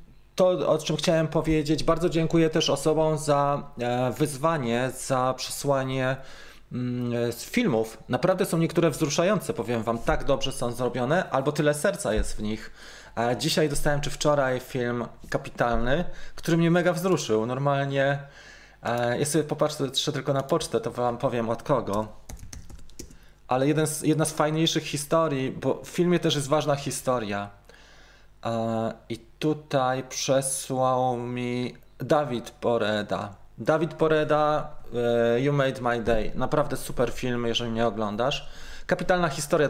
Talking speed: 125 wpm